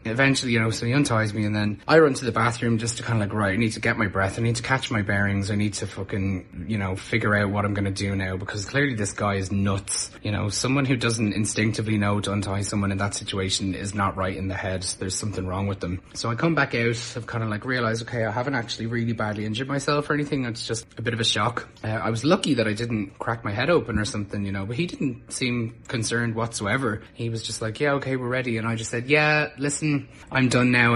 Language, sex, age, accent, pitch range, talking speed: English, male, 20-39, Irish, 105-135 Hz, 275 wpm